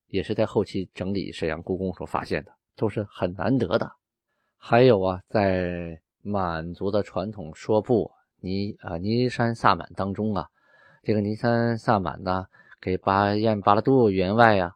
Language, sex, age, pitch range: Chinese, male, 20-39, 95-135 Hz